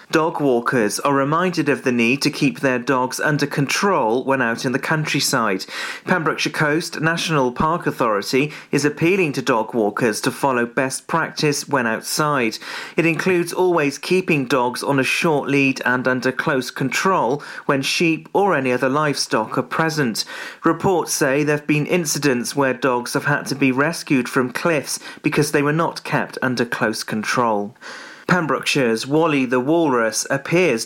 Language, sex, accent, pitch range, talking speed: English, male, British, 130-160 Hz, 160 wpm